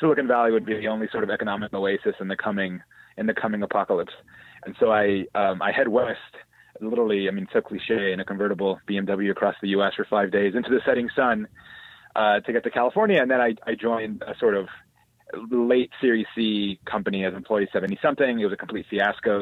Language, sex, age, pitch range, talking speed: English, male, 30-49, 100-130 Hz, 215 wpm